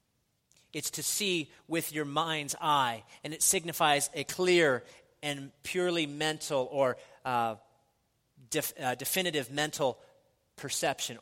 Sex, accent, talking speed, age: male, American, 120 wpm, 40-59